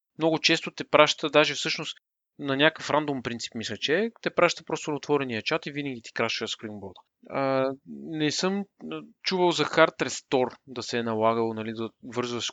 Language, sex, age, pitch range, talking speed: Bulgarian, male, 30-49, 115-160 Hz, 170 wpm